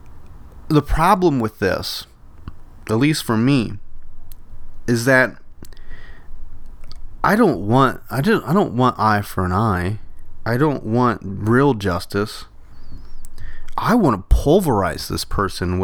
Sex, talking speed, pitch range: male, 125 wpm, 85-120 Hz